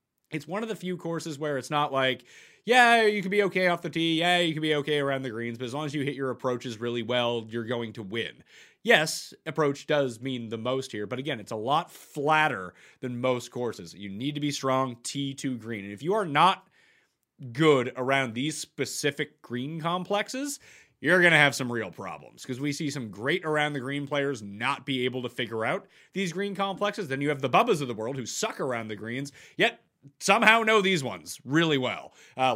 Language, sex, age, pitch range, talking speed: English, male, 30-49, 120-155 Hz, 220 wpm